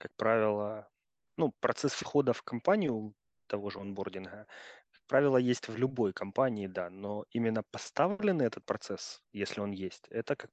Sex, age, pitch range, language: male, 20-39, 105-125 Hz, Russian